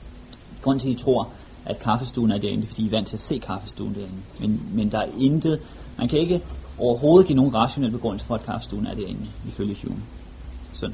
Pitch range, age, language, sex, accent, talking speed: 100-130 Hz, 30-49, Danish, male, native, 220 wpm